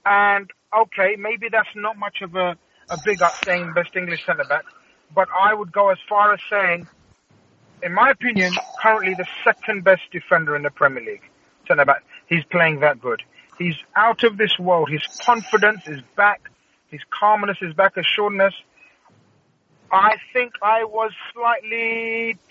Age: 30-49